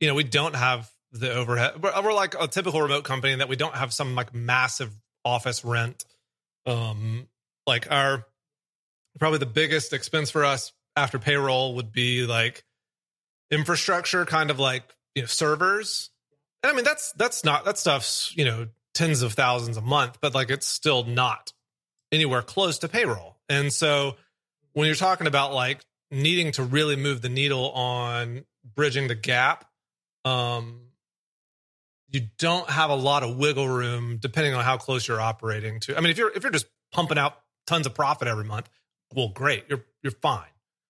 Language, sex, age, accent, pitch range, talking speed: English, male, 30-49, American, 120-150 Hz, 175 wpm